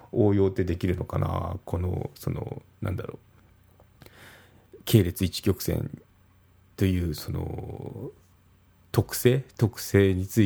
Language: Japanese